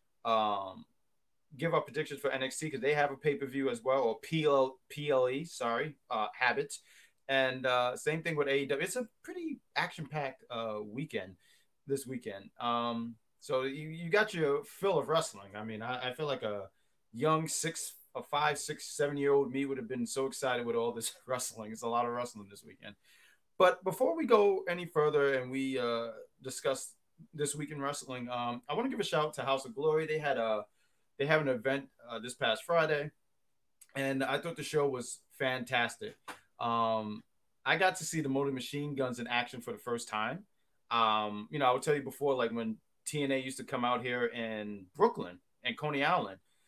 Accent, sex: American, male